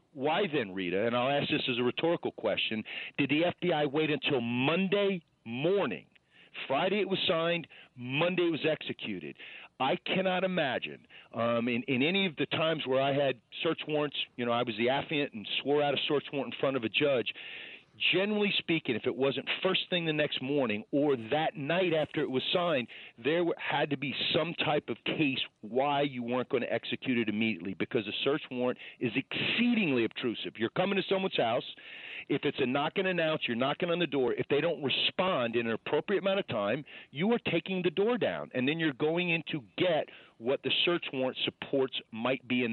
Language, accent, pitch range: English, American, 130-175 Hz